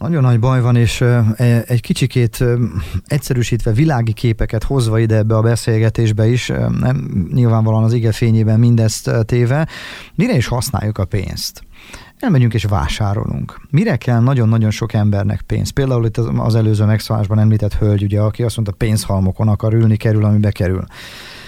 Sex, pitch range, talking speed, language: male, 105-120 Hz, 150 wpm, Hungarian